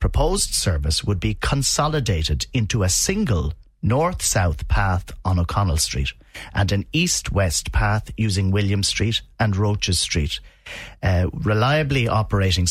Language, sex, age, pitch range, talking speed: English, male, 40-59, 90-120 Hz, 125 wpm